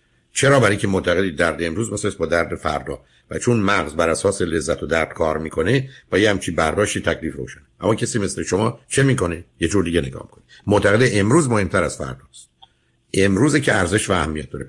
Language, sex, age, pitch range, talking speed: Persian, male, 60-79, 85-110 Hz, 190 wpm